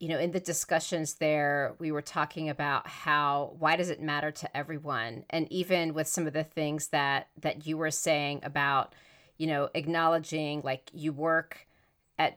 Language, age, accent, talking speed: English, 40-59, American, 180 wpm